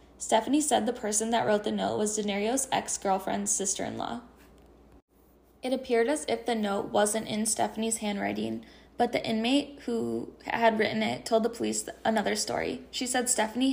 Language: English